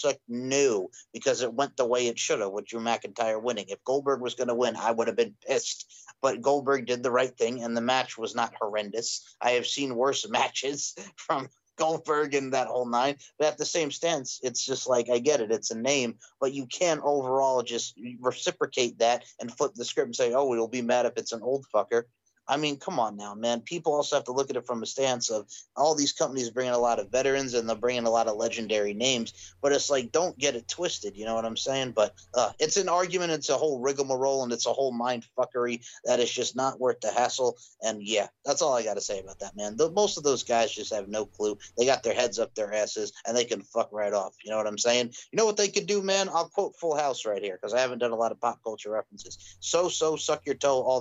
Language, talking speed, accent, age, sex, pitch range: English, 255 wpm, American, 30-49, male, 115-145 Hz